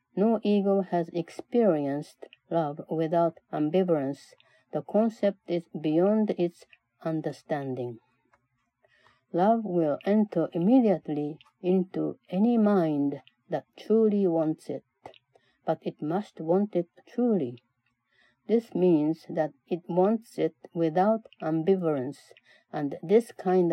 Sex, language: female, Japanese